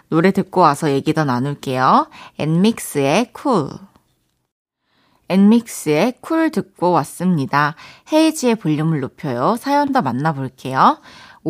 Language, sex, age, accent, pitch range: Korean, female, 20-39, native, 175-260 Hz